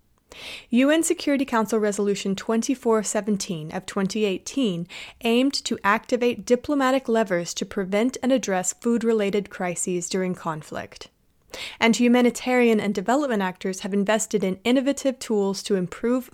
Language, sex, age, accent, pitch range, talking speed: English, female, 30-49, American, 195-245 Hz, 120 wpm